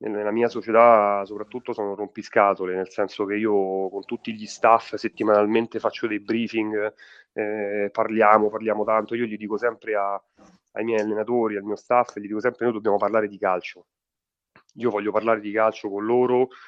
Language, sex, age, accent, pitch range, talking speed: Italian, male, 30-49, native, 100-115 Hz, 175 wpm